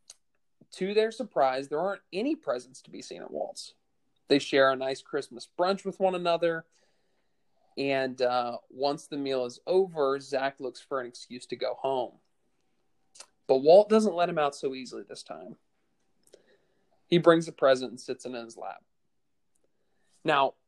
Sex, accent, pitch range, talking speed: male, American, 130-165 Hz, 165 wpm